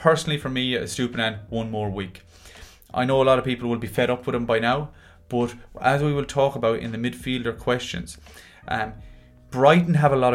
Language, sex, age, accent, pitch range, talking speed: English, male, 30-49, Irish, 105-130 Hz, 210 wpm